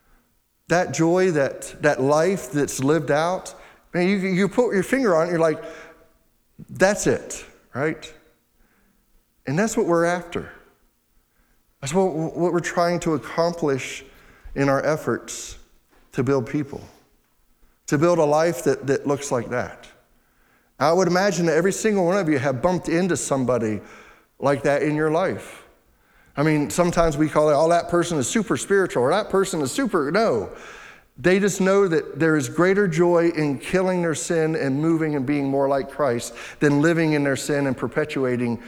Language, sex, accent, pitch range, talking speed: English, male, American, 135-175 Hz, 170 wpm